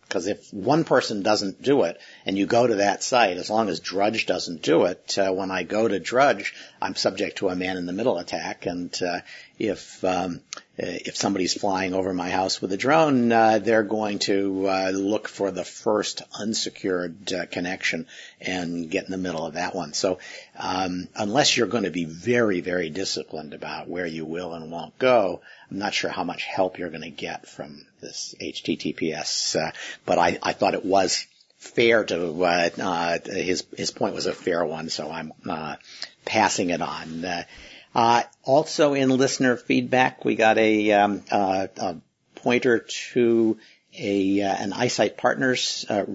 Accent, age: American, 50-69